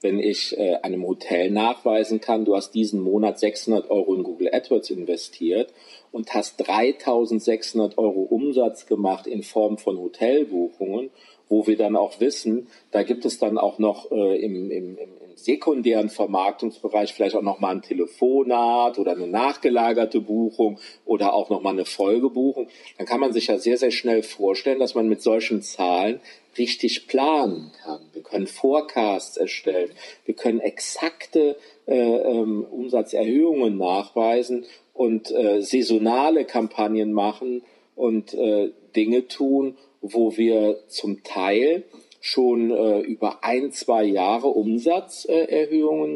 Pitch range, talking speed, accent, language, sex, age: 110-135 Hz, 135 wpm, German, German, male, 40-59